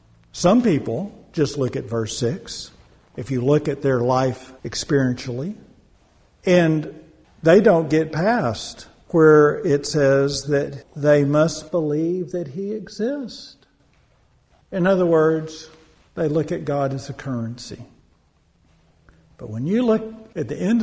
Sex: male